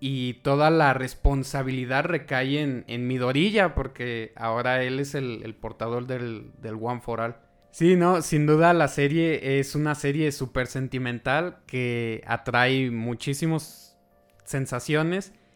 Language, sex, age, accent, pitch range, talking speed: Spanish, male, 20-39, Mexican, 125-155 Hz, 140 wpm